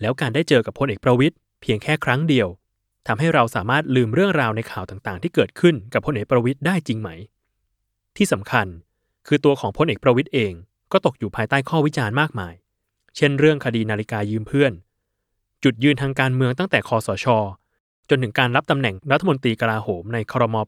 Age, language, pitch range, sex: 20-39, Thai, 105-140 Hz, male